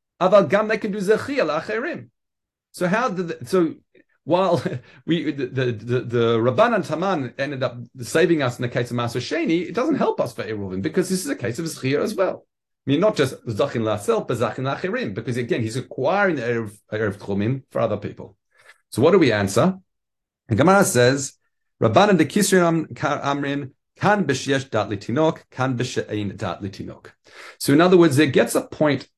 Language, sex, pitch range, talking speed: English, male, 115-165 Hz, 185 wpm